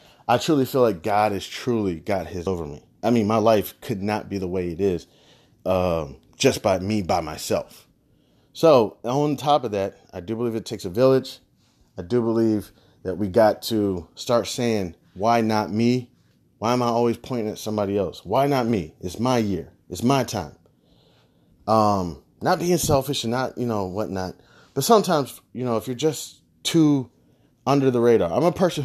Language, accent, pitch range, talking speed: English, American, 100-130 Hz, 190 wpm